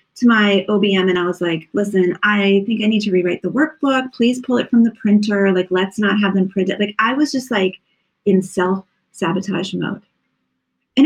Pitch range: 200-280 Hz